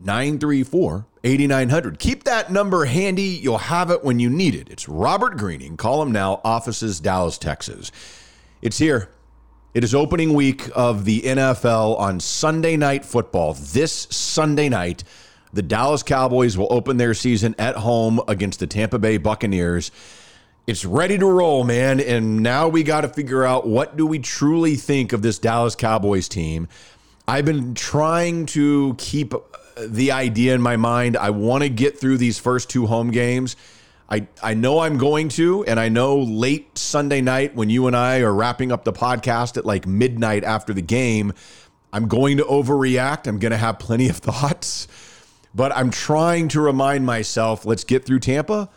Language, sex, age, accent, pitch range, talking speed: English, male, 40-59, American, 110-140 Hz, 170 wpm